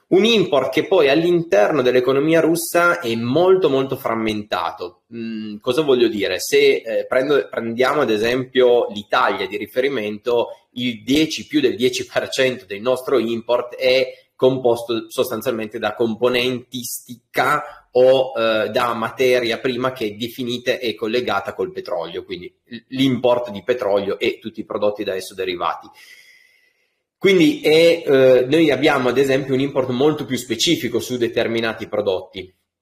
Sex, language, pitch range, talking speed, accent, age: male, Italian, 115-165 Hz, 140 wpm, native, 30-49